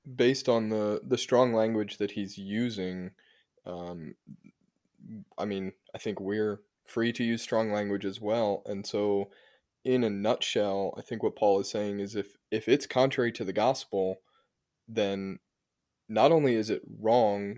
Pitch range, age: 100-110 Hz, 10-29